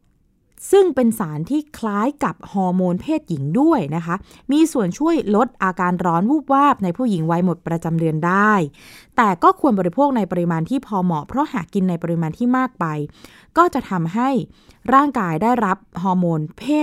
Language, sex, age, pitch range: Thai, female, 20-39, 165-250 Hz